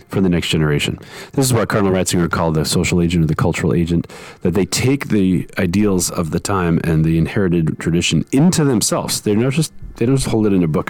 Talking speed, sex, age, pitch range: 230 wpm, male, 40-59, 90-125 Hz